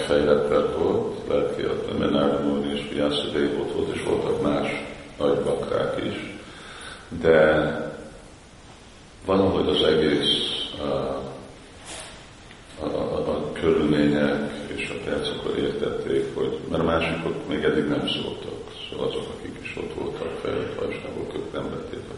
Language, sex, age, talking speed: Hungarian, male, 50-69, 135 wpm